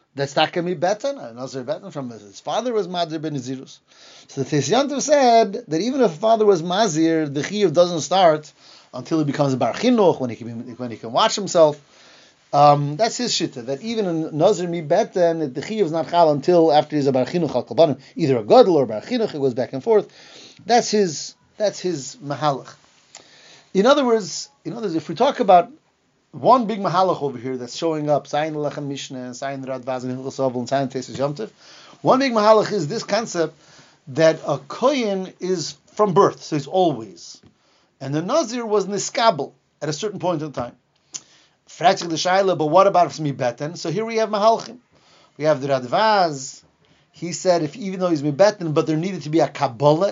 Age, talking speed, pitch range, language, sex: 30-49, 185 wpm, 140-200 Hz, English, male